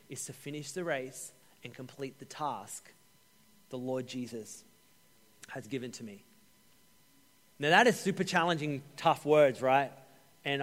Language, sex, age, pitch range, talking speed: English, male, 30-49, 135-180 Hz, 140 wpm